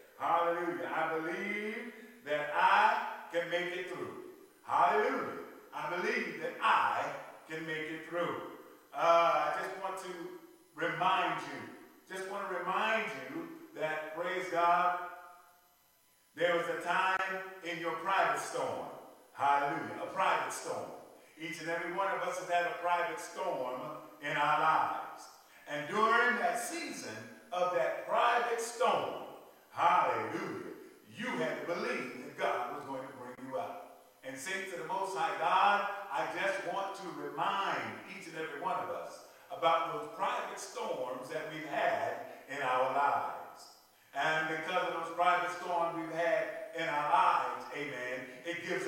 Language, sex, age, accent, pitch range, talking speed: English, male, 50-69, American, 160-225 Hz, 150 wpm